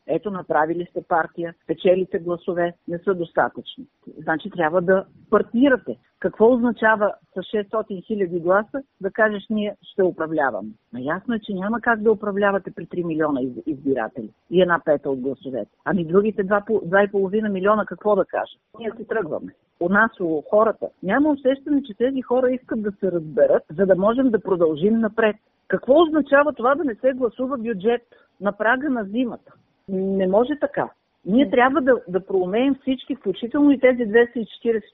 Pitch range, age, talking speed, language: 190-255 Hz, 50-69, 160 wpm, Bulgarian